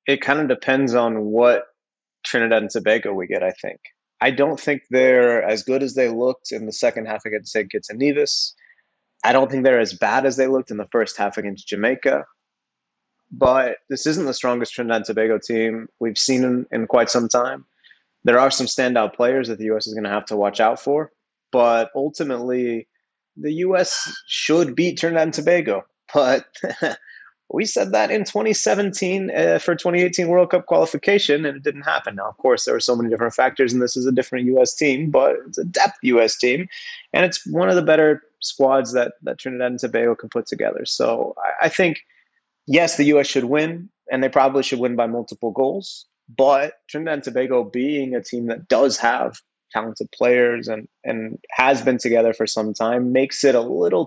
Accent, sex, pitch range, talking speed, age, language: American, male, 115-155 Hz, 200 wpm, 20-39, English